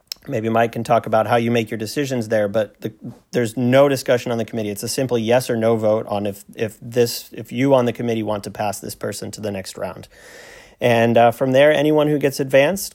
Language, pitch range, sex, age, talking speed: English, 110-125 Hz, male, 30-49, 240 wpm